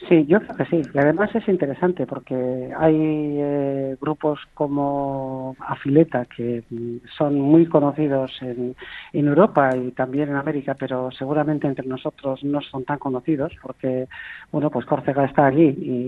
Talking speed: 155 wpm